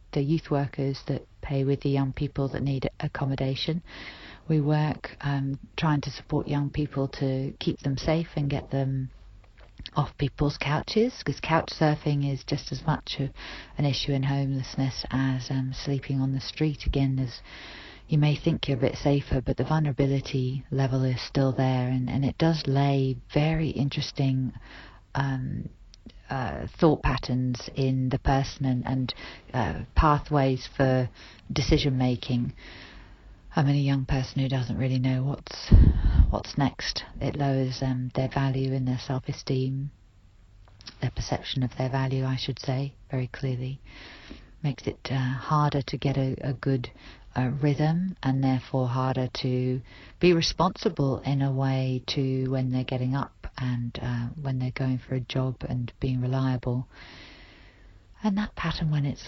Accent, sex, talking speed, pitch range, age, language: British, female, 155 wpm, 130-145 Hz, 40-59, English